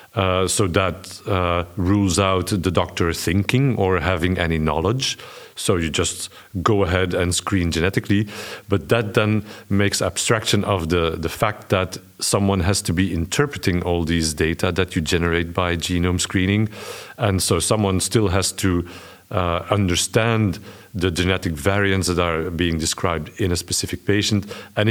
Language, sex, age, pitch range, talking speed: English, male, 50-69, 90-105 Hz, 155 wpm